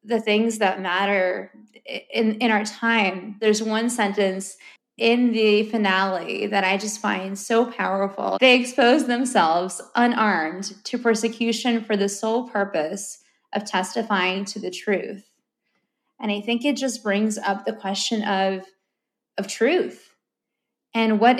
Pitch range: 195-230 Hz